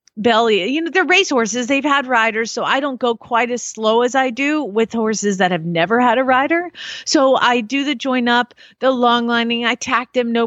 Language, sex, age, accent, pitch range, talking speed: English, female, 30-49, American, 205-275 Hz, 230 wpm